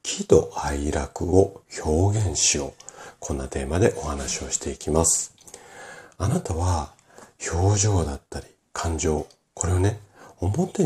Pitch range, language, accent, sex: 80-110 Hz, Japanese, native, male